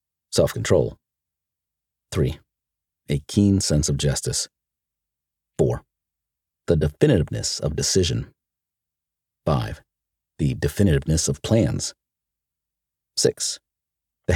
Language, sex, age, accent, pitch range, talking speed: English, male, 40-59, American, 75-95 Hz, 80 wpm